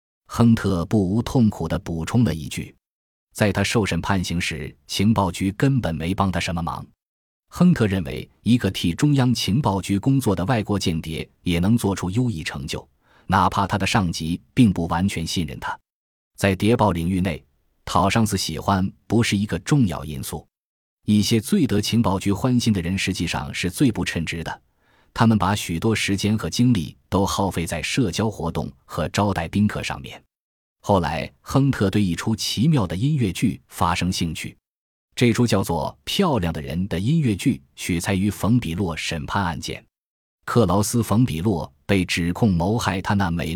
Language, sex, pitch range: Chinese, male, 85-115 Hz